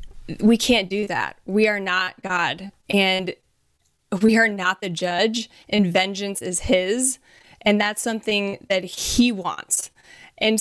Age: 20-39